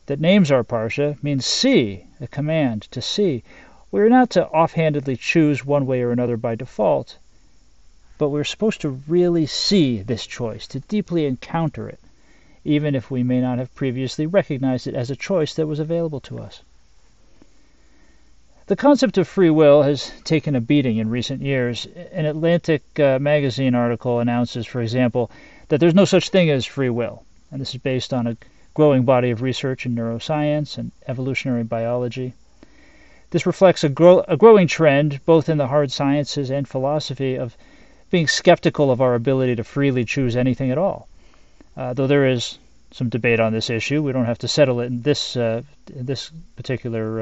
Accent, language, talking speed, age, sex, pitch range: American, English, 175 wpm, 40-59, male, 125-160 Hz